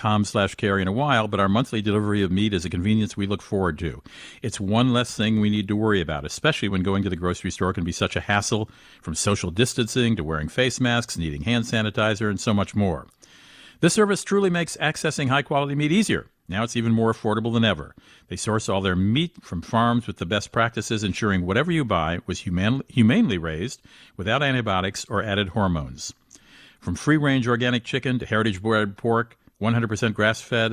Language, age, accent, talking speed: English, 50-69, American, 205 wpm